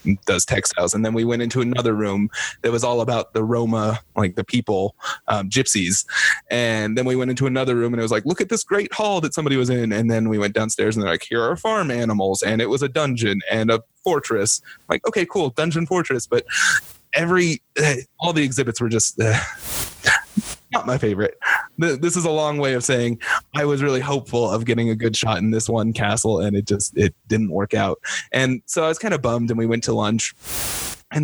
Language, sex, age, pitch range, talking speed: English, male, 20-39, 110-135 Hz, 225 wpm